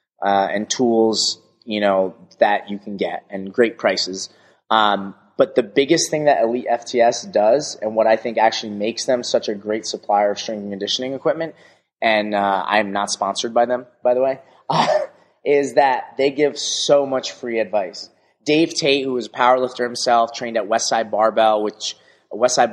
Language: English